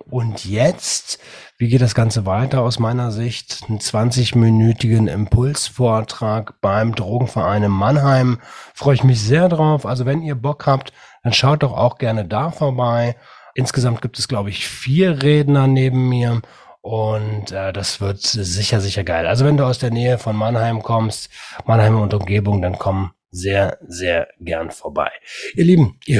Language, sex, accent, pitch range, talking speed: German, male, German, 110-135 Hz, 165 wpm